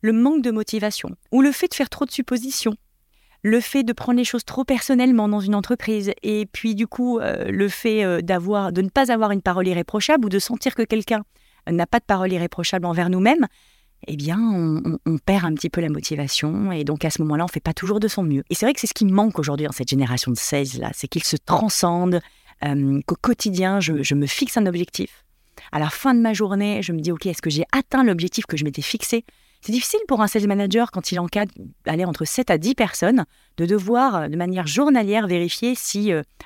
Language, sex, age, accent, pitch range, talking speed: French, female, 30-49, French, 165-230 Hz, 235 wpm